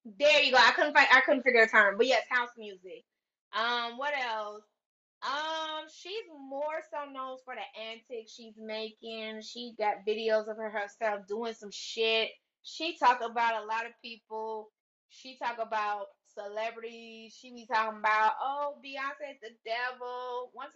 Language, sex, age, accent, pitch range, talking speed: English, female, 20-39, American, 215-265 Hz, 165 wpm